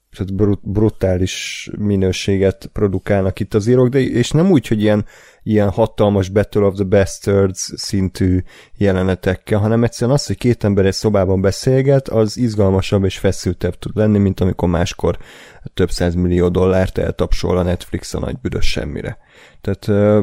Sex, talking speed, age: male, 140 wpm, 30-49